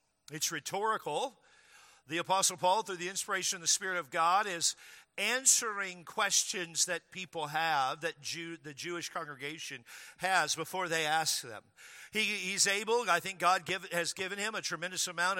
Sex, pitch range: male, 170-215 Hz